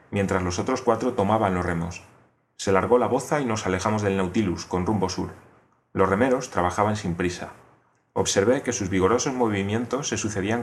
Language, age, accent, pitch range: Spanish, 30-49, Spanish, 95-120 Hz